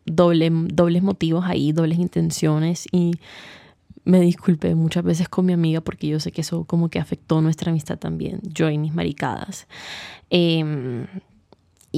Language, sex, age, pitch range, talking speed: Spanish, female, 20-39, 165-185 Hz, 150 wpm